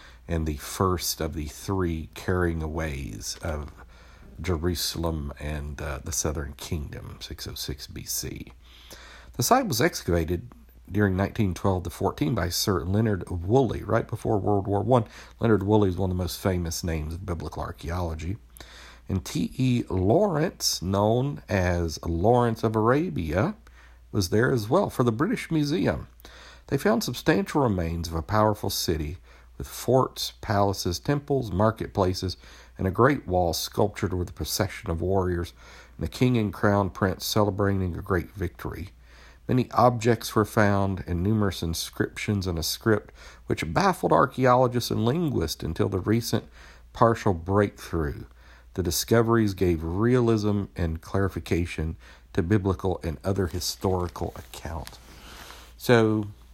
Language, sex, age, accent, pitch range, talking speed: English, male, 50-69, American, 80-110 Hz, 135 wpm